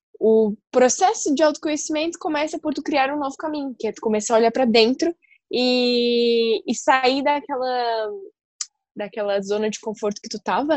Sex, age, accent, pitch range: female, 10-29, Brazilian, 180-230 Hz